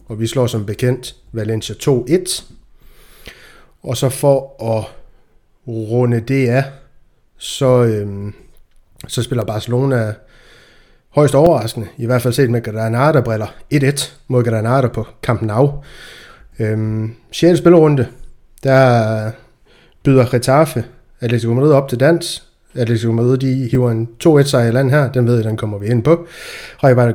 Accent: native